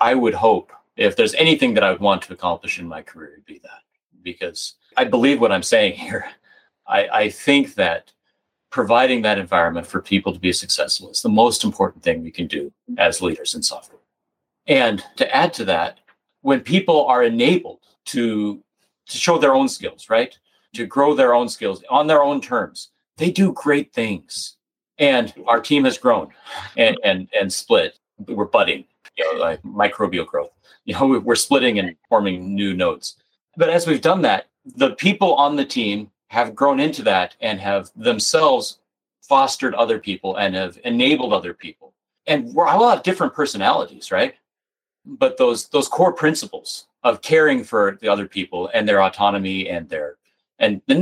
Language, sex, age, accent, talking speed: English, male, 40-59, American, 180 wpm